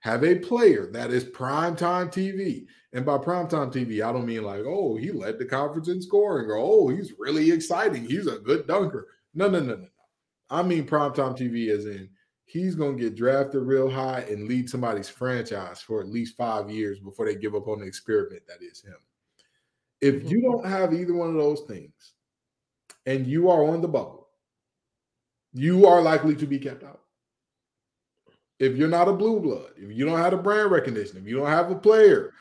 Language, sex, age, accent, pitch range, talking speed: English, male, 20-39, American, 125-190 Hz, 200 wpm